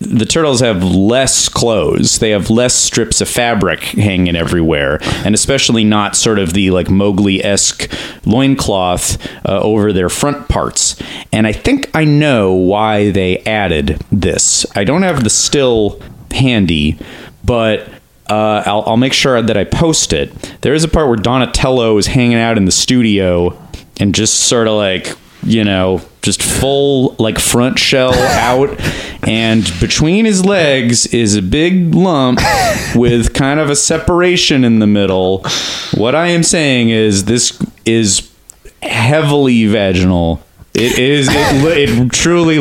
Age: 30-49